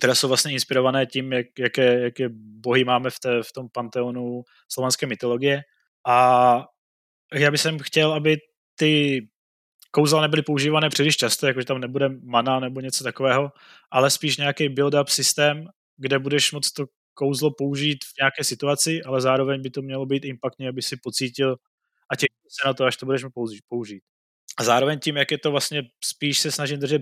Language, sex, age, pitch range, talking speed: Czech, male, 20-39, 125-140 Hz, 175 wpm